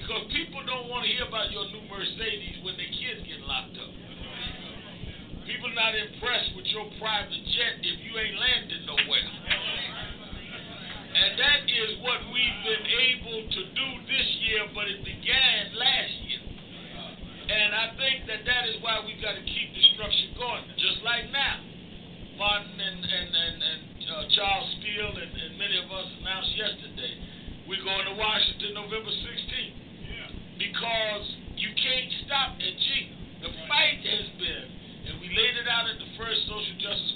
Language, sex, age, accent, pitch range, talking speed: English, male, 50-69, American, 195-225 Hz, 165 wpm